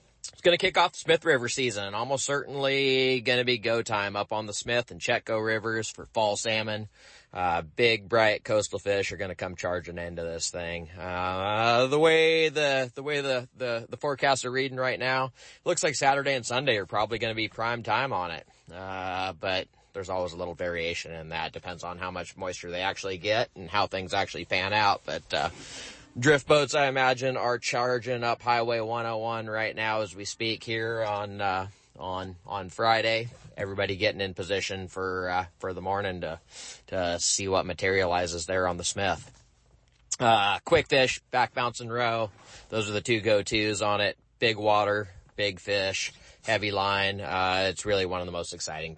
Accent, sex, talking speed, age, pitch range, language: American, male, 195 wpm, 30-49, 95-125 Hz, English